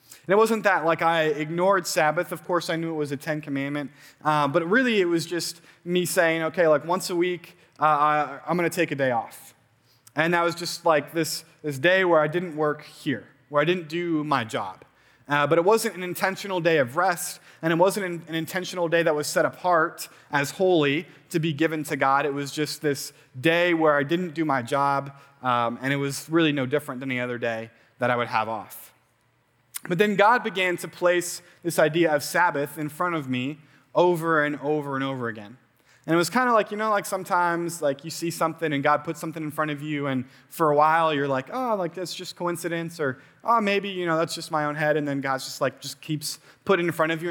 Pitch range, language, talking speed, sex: 145-175 Hz, English, 235 wpm, male